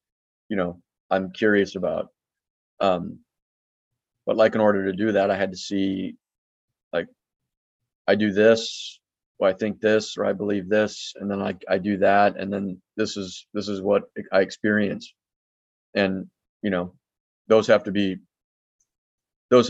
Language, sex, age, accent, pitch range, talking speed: English, male, 30-49, American, 95-105 Hz, 160 wpm